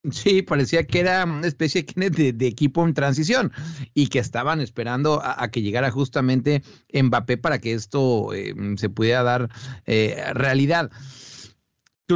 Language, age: English, 40-59